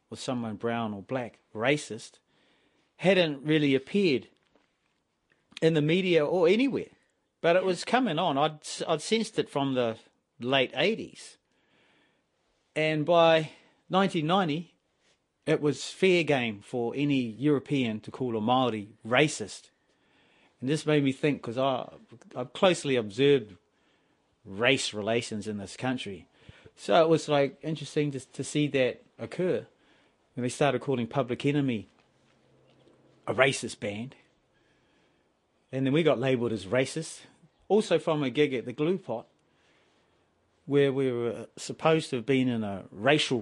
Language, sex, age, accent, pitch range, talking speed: English, male, 40-59, Australian, 115-150 Hz, 140 wpm